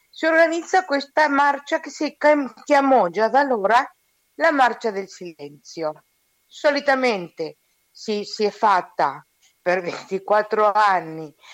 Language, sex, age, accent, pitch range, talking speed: Italian, female, 50-69, native, 165-235 Hz, 115 wpm